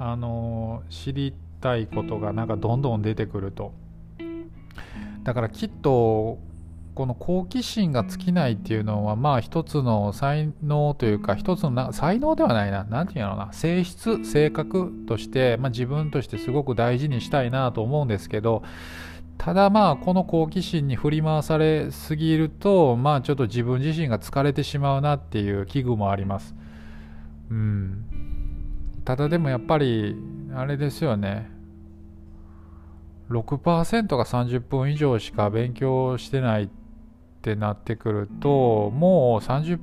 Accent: native